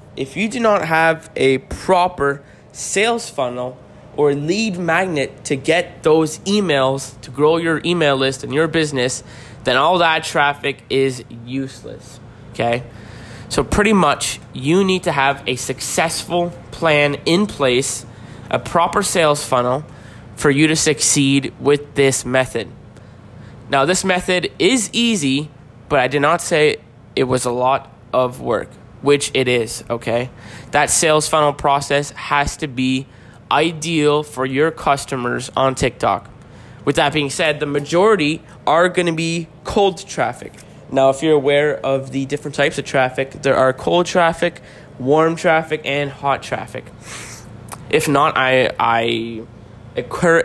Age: 20-39